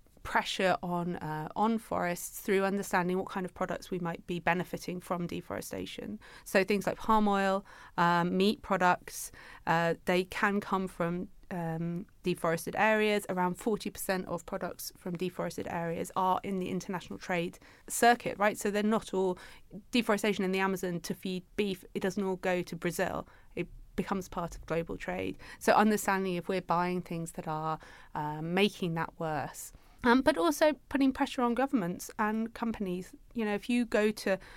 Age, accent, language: 30-49, British, English